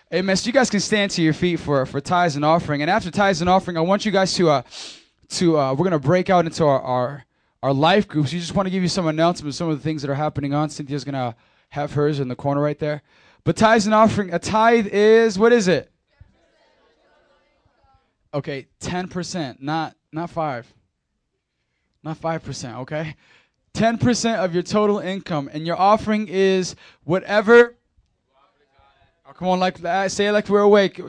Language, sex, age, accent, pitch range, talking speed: English, male, 20-39, American, 145-205 Hz, 195 wpm